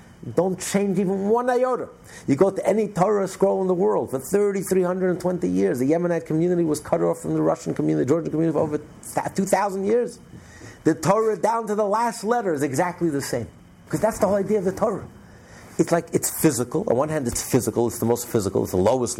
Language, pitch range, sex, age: English, 115-185 Hz, male, 50-69